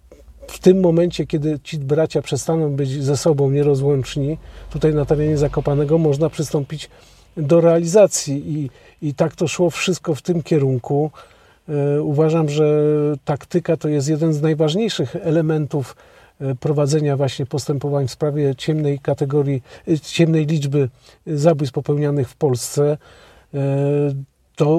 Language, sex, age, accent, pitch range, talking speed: Polish, male, 50-69, native, 145-170 Hz, 125 wpm